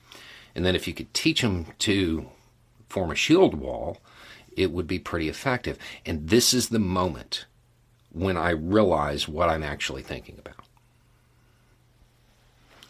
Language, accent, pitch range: English, American, 80-120 Hz